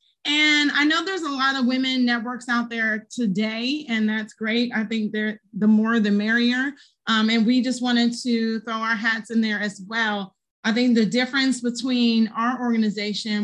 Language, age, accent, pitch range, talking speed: English, 30-49, American, 215-255 Hz, 190 wpm